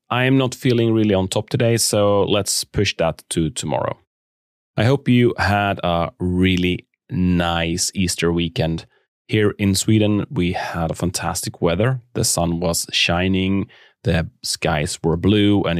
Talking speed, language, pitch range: 150 wpm, English, 85-105 Hz